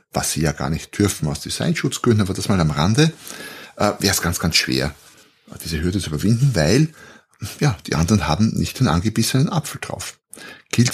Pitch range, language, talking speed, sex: 90-120 Hz, German, 185 wpm, male